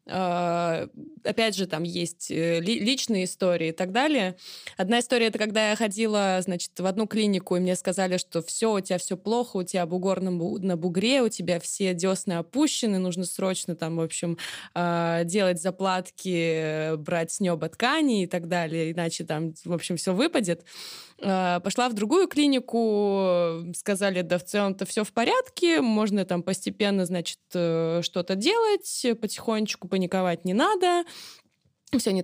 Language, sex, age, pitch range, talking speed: Russian, female, 20-39, 180-225 Hz, 155 wpm